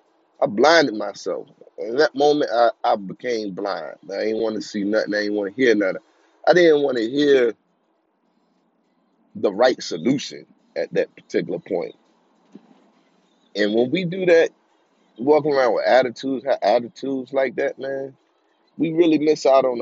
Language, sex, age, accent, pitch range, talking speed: English, male, 30-49, American, 100-135 Hz, 155 wpm